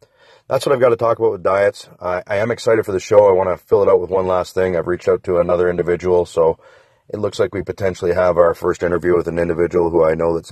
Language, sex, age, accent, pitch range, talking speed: English, male, 30-49, American, 90-125 Hz, 280 wpm